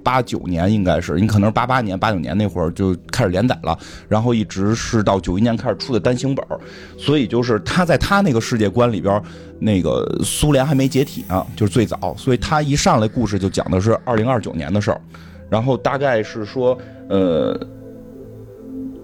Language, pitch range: Chinese, 95-130 Hz